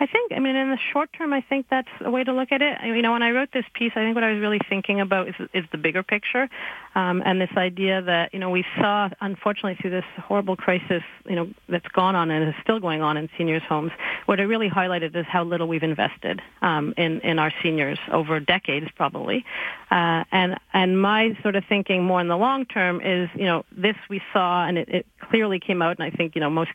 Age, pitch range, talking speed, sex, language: 40-59, 170-210 Hz, 250 wpm, female, English